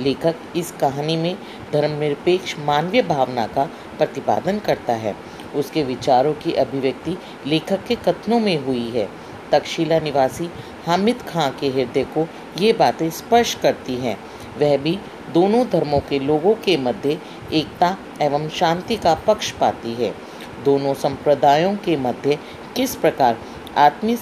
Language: Hindi